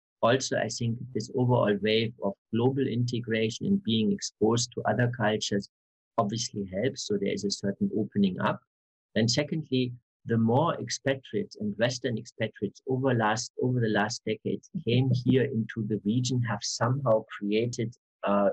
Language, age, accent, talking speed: German, 50-69, German, 150 wpm